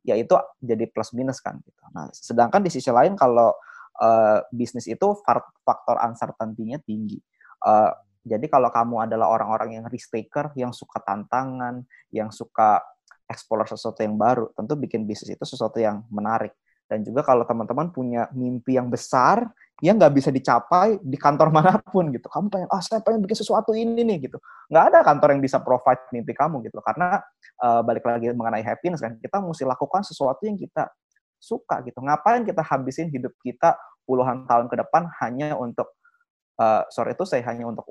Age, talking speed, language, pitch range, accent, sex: 20-39, 180 wpm, Indonesian, 120-165 Hz, native, male